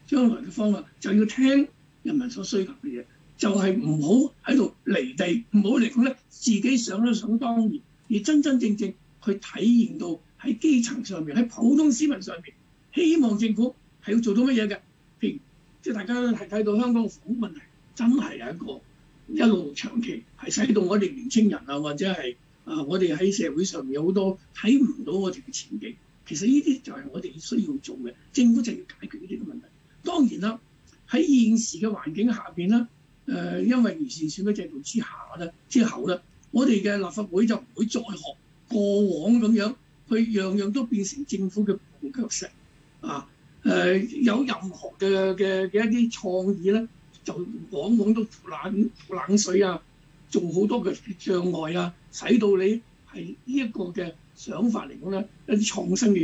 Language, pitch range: Chinese, 190-245 Hz